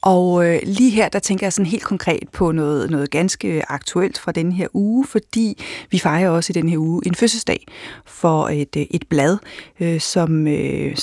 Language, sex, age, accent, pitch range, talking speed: Danish, female, 40-59, native, 170-215 Hz, 195 wpm